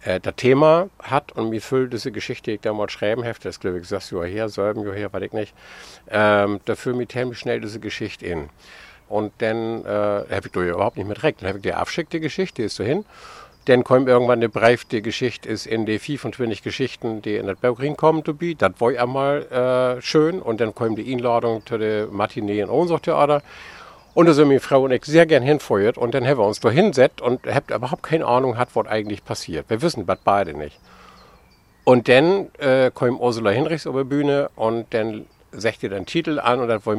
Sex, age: male, 50-69